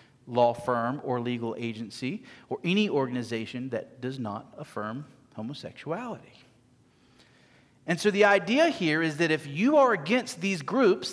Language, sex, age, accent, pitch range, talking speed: English, male, 40-59, American, 125-185 Hz, 140 wpm